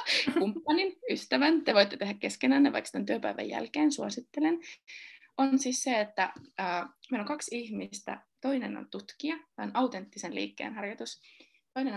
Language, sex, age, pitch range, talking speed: Finnish, female, 20-39, 215-295 Hz, 145 wpm